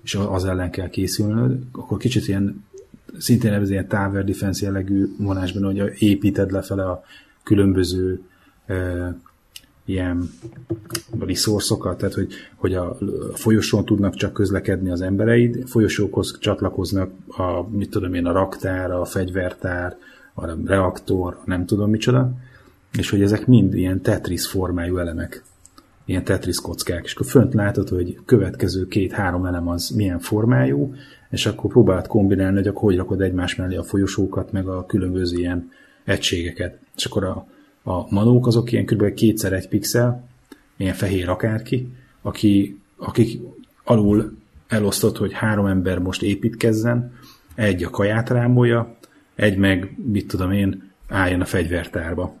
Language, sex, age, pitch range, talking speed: Hungarian, male, 30-49, 95-110 Hz, 140 wpm